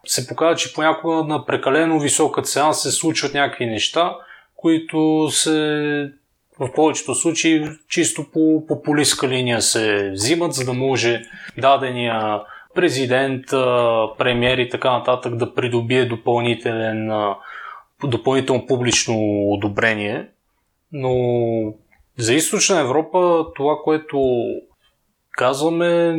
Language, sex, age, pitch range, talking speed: Bulgarian, male, 20-39, 120-155 Hz, 105 wpm